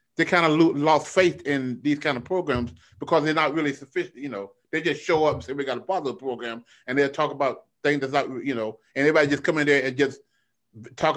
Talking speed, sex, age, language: 245 wpm, male, 30-49, English